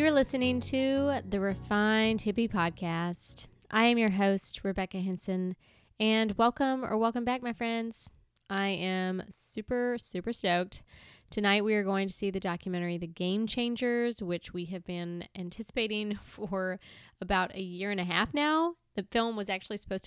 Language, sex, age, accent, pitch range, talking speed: English, female, 20-39, American, 180-220 Hz, 165 wpm